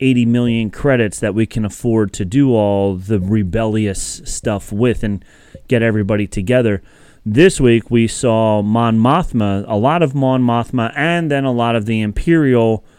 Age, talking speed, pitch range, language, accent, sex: 30-49, 165 wpm, 105-145 Hz, English, American, male